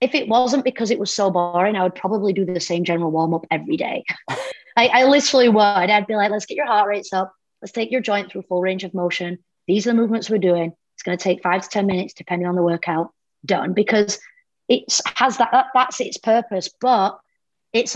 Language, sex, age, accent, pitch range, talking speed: English, female, 30-49, British, 185-240 Hz, 225 wpm